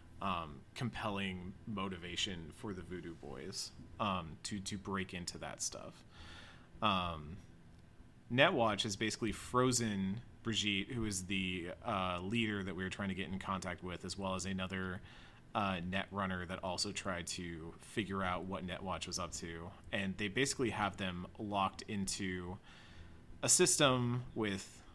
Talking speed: 150 wpm